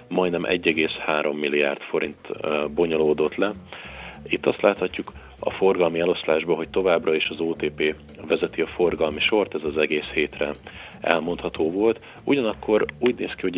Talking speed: 140 wpm